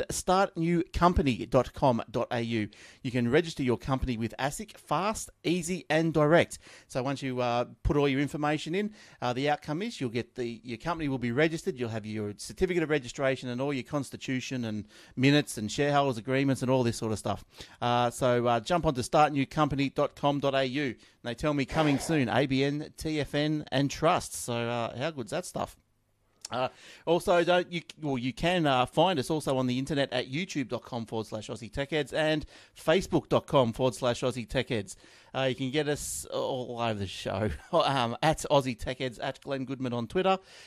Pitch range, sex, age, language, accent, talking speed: 120-155 Hz, male, 30-49, English, Australian, 180 wpm